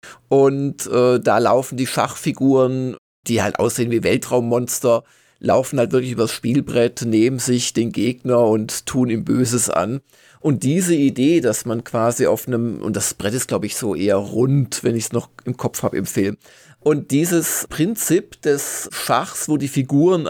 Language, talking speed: German, 175 wpm